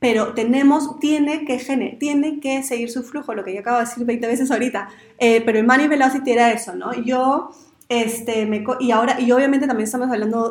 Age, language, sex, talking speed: 20-39, Spanish, female, 210 wpm